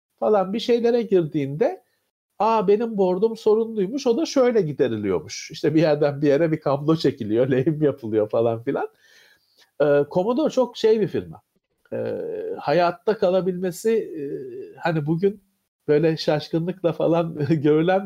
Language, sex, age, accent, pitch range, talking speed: Turkish, male, 50-69, native, 150-215 Hz, 135 wpm